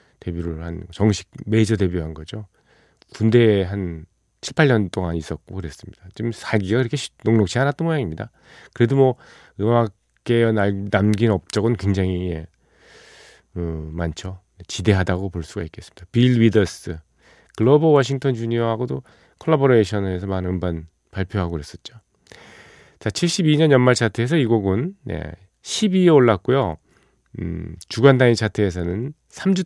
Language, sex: Korean, male